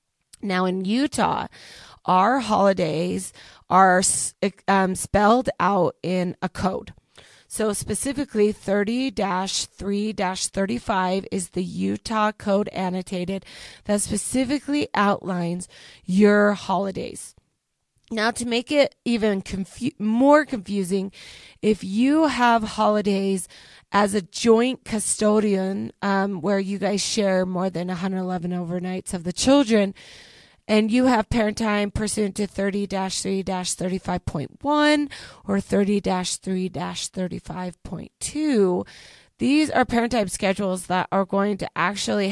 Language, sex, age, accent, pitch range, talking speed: English, female, 30-49, American, 185-220 Hz, 105 wpm